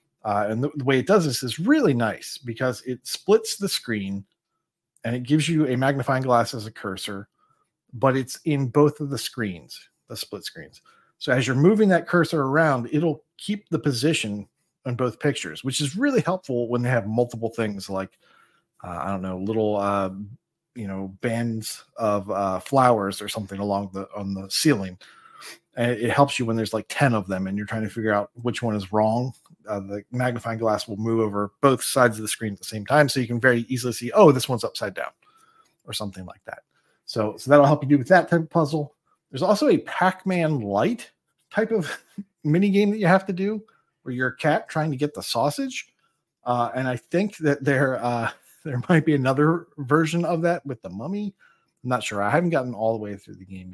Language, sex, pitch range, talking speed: English, male, 110-155 Hz, 215 wpm